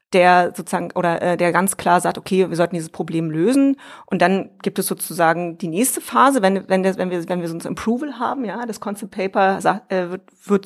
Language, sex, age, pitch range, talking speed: German, female, 30-49, 185-230 Hz, 210 wpm